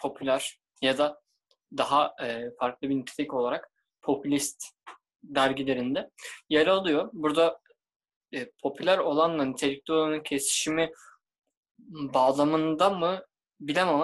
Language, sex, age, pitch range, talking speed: Turkish, male, 20-39, 140-180 Hz, 90 wpm